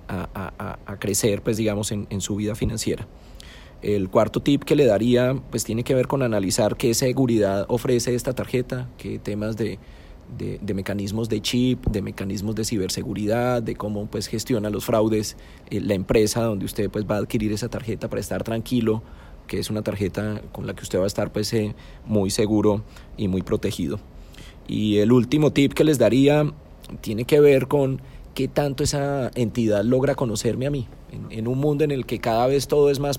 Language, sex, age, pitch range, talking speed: Spanish, male, 30-49, 105-130 Hz, 195 wpm